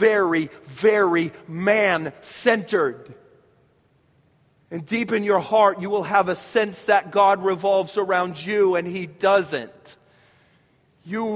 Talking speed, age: 115 wpm, 40-59